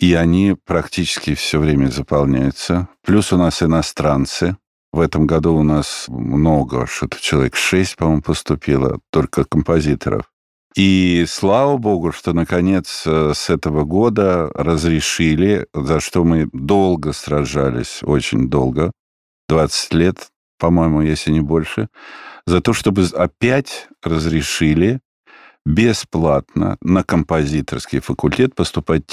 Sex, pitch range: male, 75-90 Hz